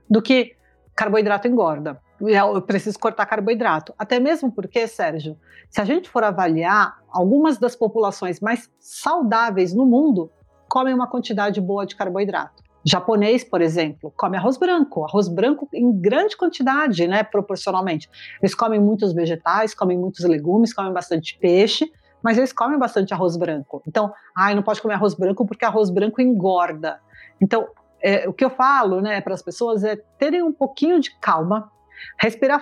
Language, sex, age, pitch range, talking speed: Portuguese, female, 40-59, 185-240 Hz, 160 wpm